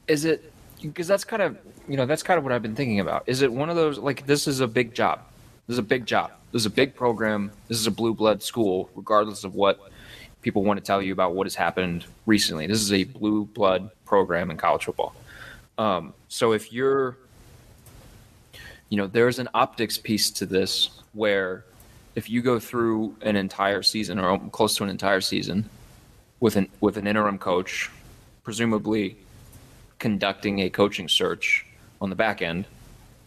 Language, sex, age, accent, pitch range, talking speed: English, male, 20-39, American, 100-120 Hz, 190 wpm